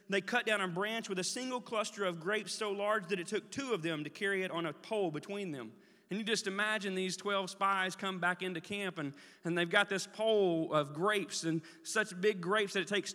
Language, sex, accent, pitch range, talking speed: English, male, American, 175-210 Hz, 240 wpm